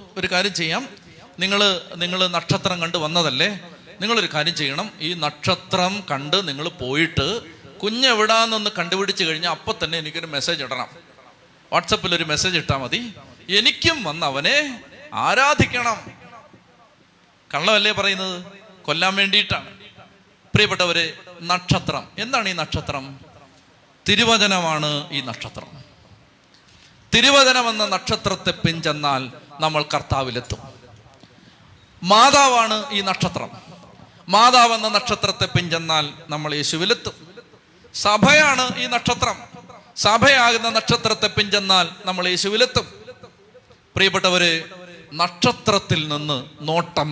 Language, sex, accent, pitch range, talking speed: Malayalam, male, native, 150-210 Hz, 90 wpm